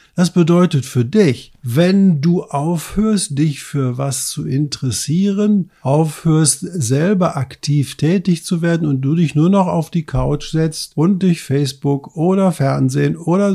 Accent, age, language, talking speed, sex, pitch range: German, 50-69, German, 145 wpm, male, 140-175 Hz